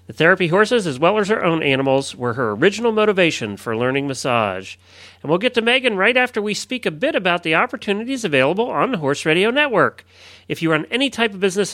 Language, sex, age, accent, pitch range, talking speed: English, male, 40-59, American, 140-215 Hz, 220 wpm